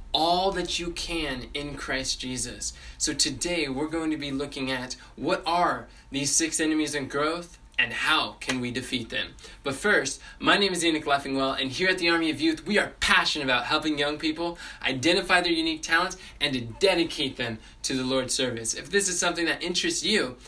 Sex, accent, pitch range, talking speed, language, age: male, American, 130-170 Hz, 200 wpm, English, 20-39